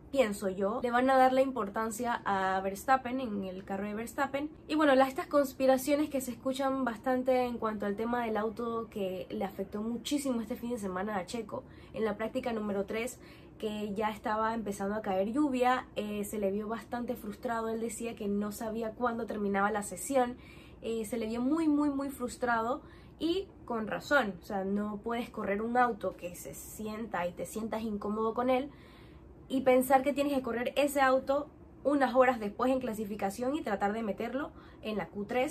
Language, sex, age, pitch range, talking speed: Spanish, female, 10-29, 215-265 Hz, 190 wpm